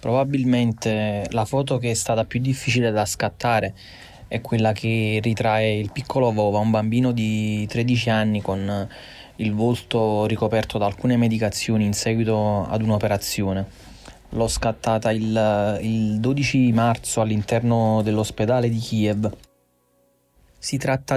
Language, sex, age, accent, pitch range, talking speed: Italian, male, 20-39, native, 105-120 Hz, 130 wpm